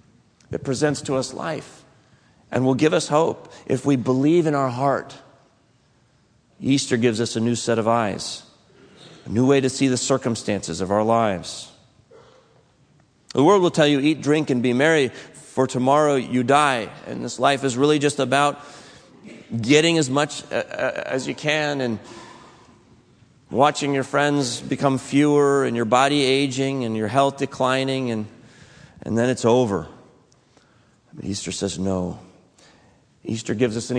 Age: 40-59